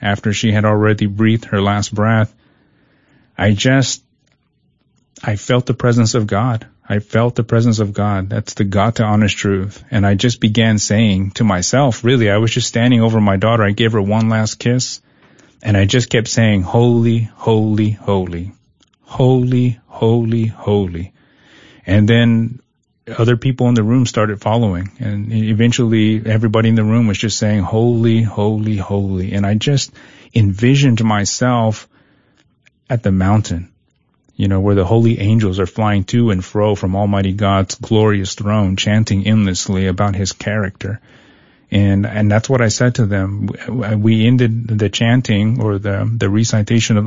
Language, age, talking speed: English, 30-49, 160 wpm